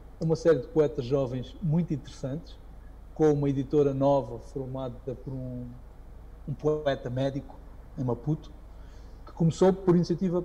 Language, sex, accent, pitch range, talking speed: English, male, Brazilian, 130-165 Hz, 130 wpm